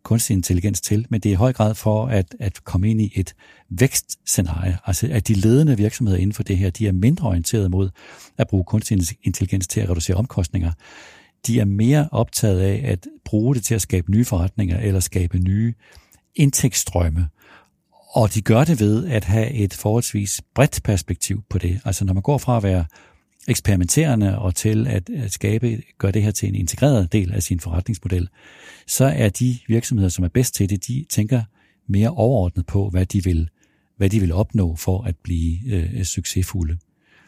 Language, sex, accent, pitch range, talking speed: Danish, male, native, 95-115 Hz, 190 wpm